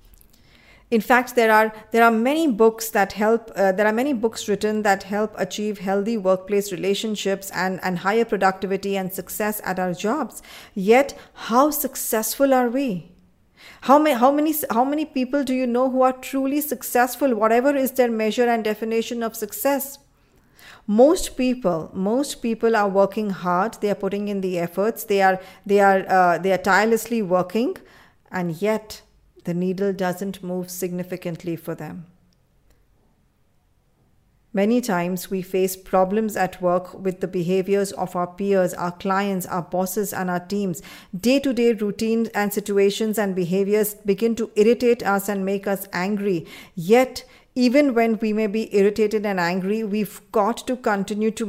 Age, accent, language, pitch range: 50-69, Indian, English, 190-230 Hz